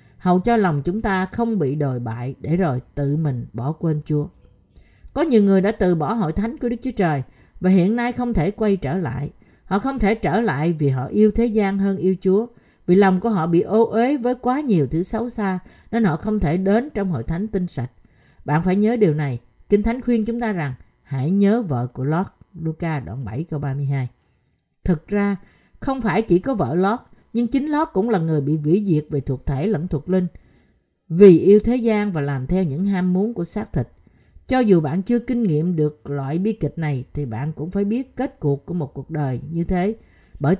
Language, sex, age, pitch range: Vietnamese, female, 50-69, 145-215 Hz